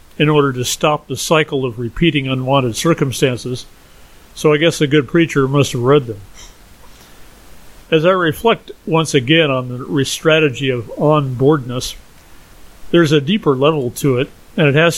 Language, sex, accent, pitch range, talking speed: English, male, American, 125-155 Hz, 155 wpm